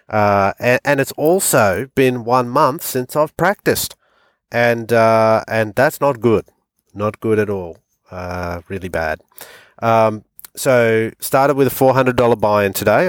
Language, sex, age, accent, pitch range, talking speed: English, male, 30-49, Australian, 100-125 Hz, 145 wpm